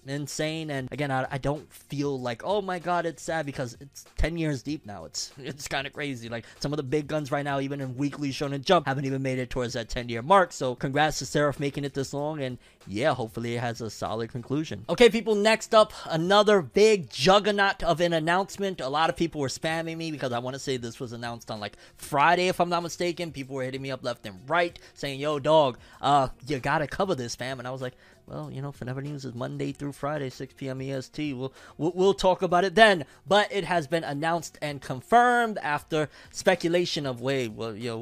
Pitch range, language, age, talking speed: 125-165 Hz, English, 20-39, 235 wpm